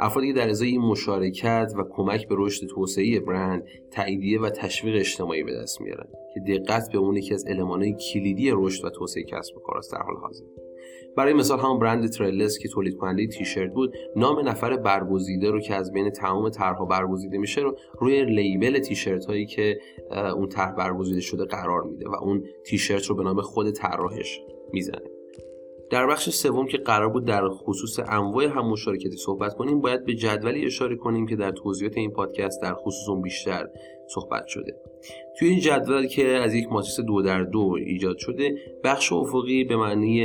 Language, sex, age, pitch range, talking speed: Persian, male, 30-49, 95-115 Hz, 185 wpm